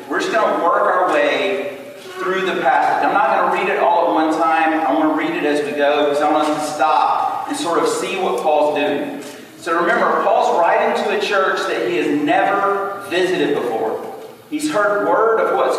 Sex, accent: male, American